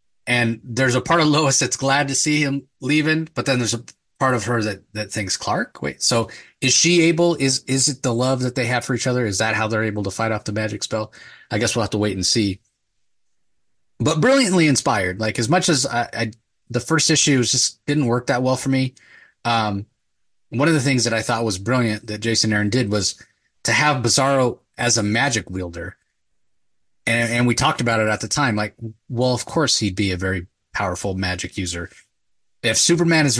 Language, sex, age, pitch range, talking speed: English, male, 30-49, 105-130 Hz, 220 wpm